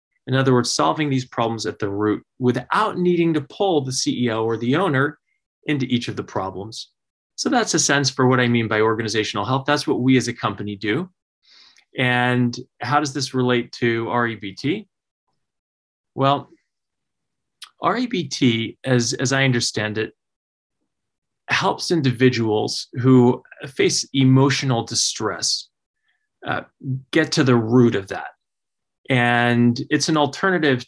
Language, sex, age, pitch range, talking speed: English, male, 20-39, 115-135 Hz, 140 wpm